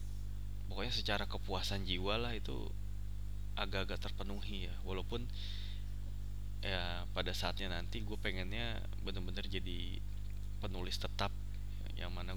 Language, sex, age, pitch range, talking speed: Indonesian, male, 20-39, 95-100 Hz, 105 wpm